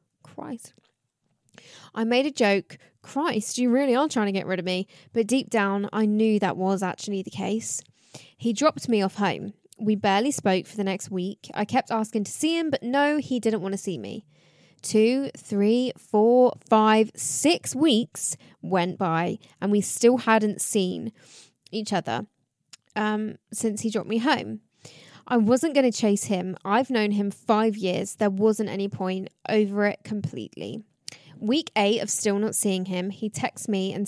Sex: female